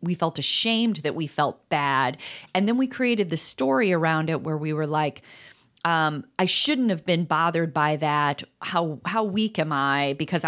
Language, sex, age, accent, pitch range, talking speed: English, female, 30-49, American, 155-215 Hz, 190 wpm